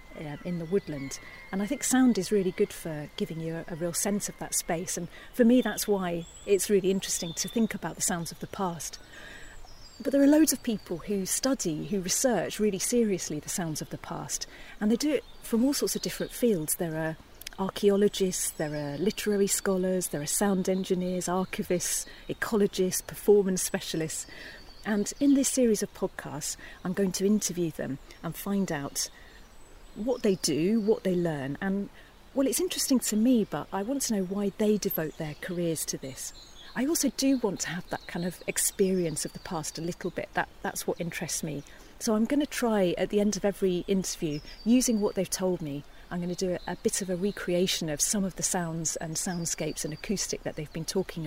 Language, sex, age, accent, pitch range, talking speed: English, female, 40-59, British, 170-210 Hz, 205 wpm